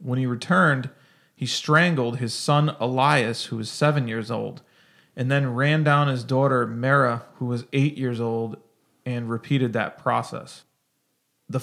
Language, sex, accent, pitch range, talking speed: English, male, American, 125-150 Hz, 155 wpm